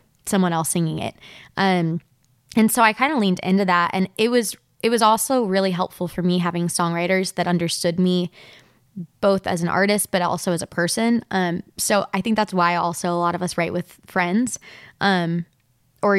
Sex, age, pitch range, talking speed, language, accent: female, 20-39, 175-200 Hz, 195 wpm, English, American